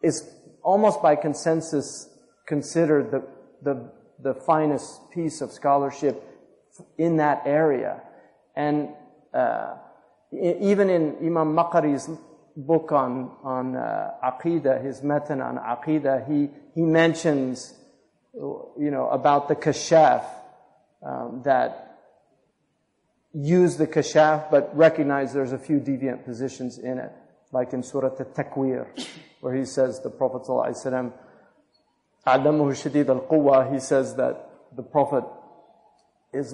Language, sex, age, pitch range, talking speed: English, male, 40-59, 135-155 Hz, 120 wpm